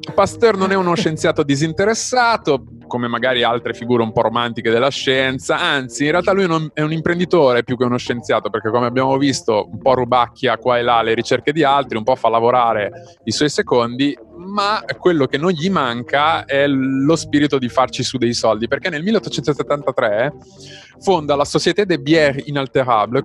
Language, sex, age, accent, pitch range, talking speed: Italian, male, 20-39, native, 120-170 Hz, 185 wpm